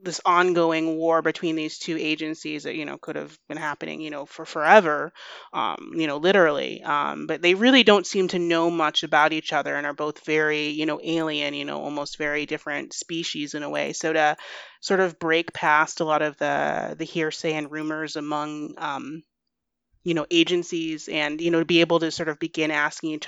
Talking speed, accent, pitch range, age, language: 210 wpm, American, 150-165 Hz, 30-49, English